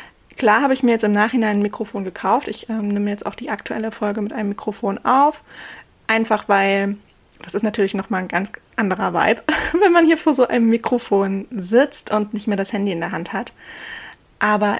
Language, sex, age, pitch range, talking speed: German, female, 20-39, 205-235 Hz, 205 wpm